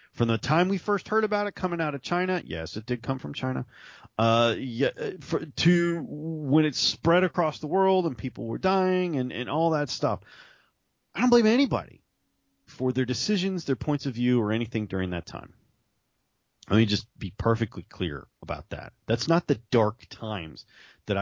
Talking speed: 190 wpm